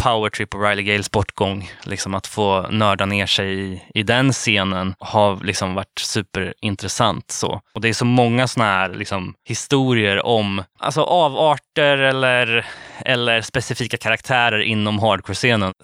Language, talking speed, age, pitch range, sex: Swedish, 150 wpm, 20-39, 105-130 Hz, male